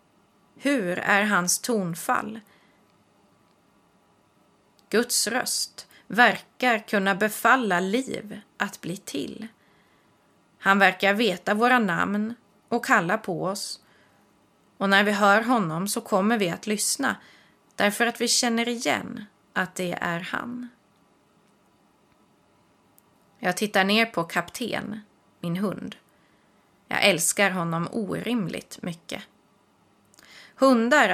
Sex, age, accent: female, 30-49, native